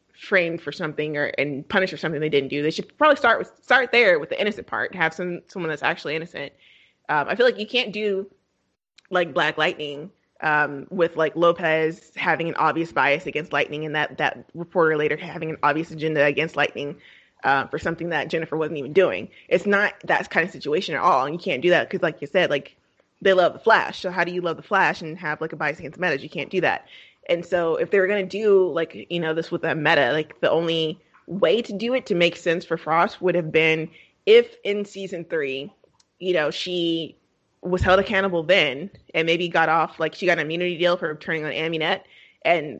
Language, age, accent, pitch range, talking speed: English, 20-39, American, 160-190 Hz, 230 wpm